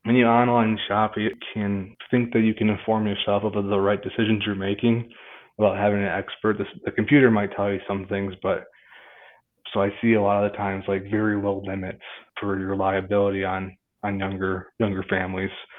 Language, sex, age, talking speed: English, male, 20-39, 195 wpm